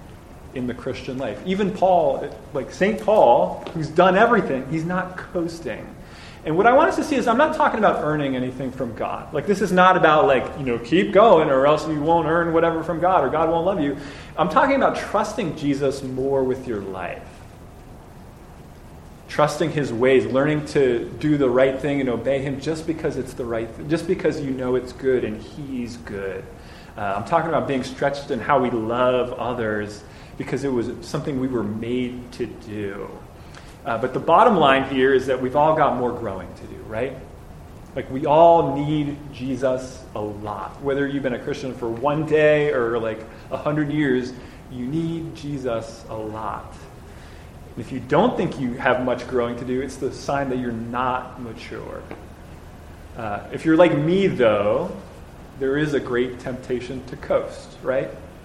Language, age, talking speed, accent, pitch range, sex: English, 30-49, 185 wpm, American, 120-150 Hz, male